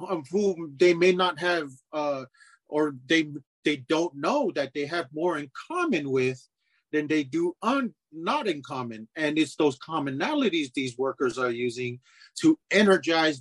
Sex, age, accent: male, 40-59, American